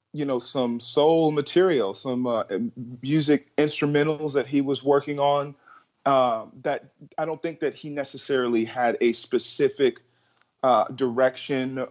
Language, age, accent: Spanish, 30-49, American